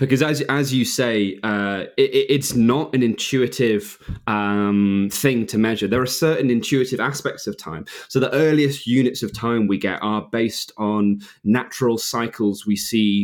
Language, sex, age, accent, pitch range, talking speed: English, male, 20-39, British, 105-130 Hz, 170 wpm